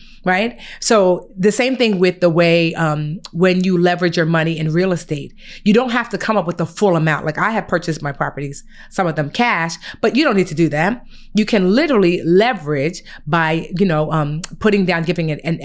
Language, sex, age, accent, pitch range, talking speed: English, female, 30-49, American, 160-200 Hz, 215 wpm